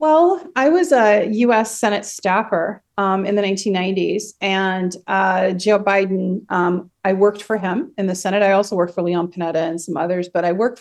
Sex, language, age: female, English, 30-49